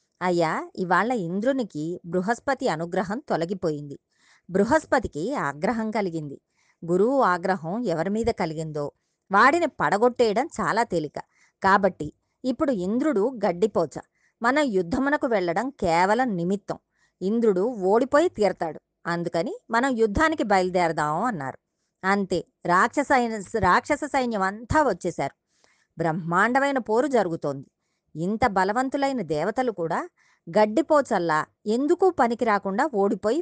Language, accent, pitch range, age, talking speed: Telugu, native, 175-255 Hz, 20-39, 95 wpm